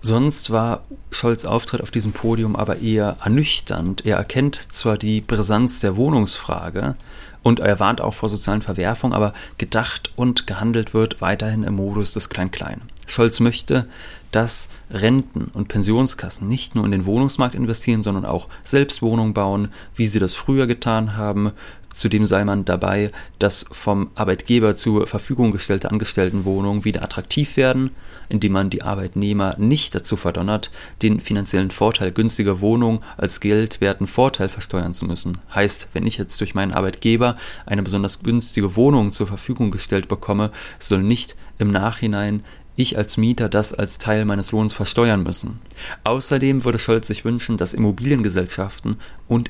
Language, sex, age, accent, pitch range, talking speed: German, male, 30-49, German, 100-115 Hz, 155 wpm